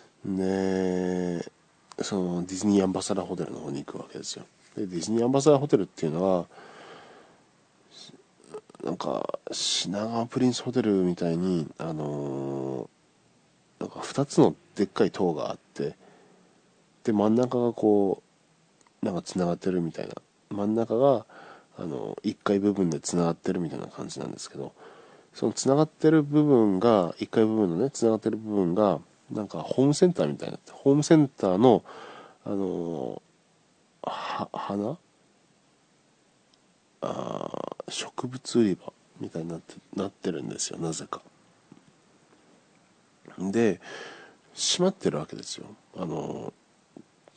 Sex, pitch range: male, 85-120 Hz